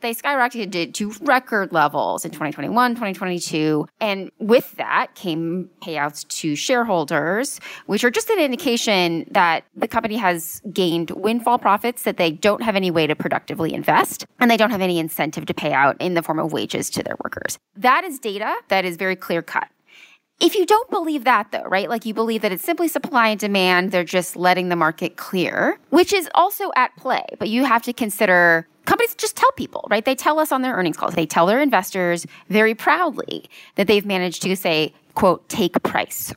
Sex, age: female, 20-39